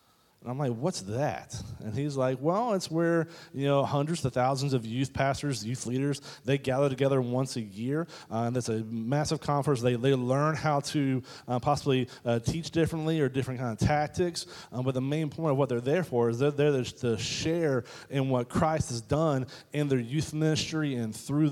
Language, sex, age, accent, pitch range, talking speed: English, male, 30-49, American, 125-160 Hz, 205 wpm